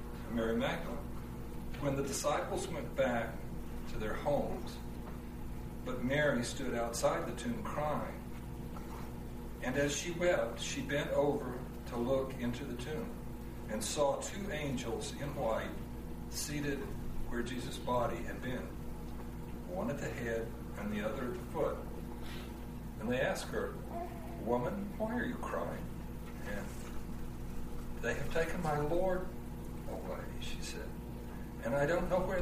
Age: 60-79